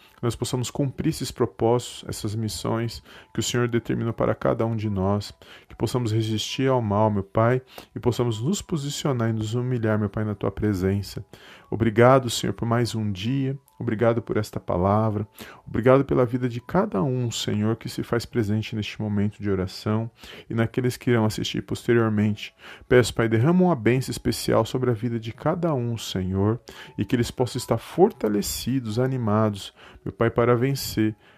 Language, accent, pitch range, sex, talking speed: Portuguese, Brazilian, 105-125 Hz, male, 175 wpm